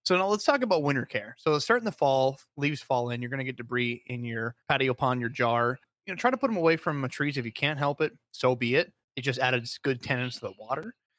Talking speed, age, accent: 280 wpm, 30-49, American